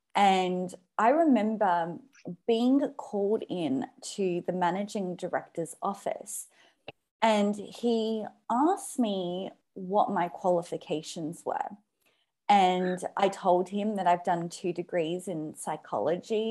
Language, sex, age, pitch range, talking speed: English, female, 20-39, 175-245 Hz, 110 wpm